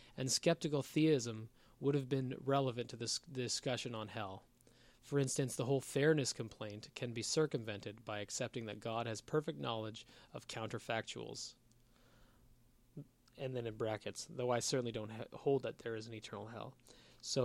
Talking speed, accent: 160 wpm, American